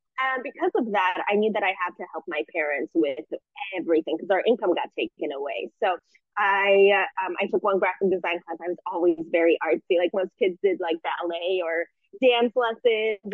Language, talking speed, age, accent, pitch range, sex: English, 200 wpm, 20-39, American, 185-260 Hz, female